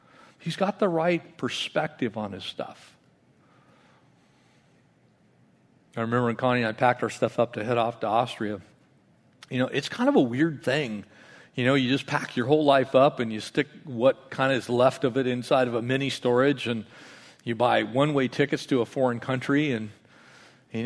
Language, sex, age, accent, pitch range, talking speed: English, male, 50-69, American, 120-150 Hz, 190 wpm